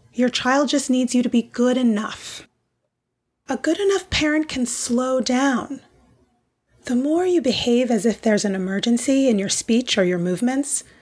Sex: female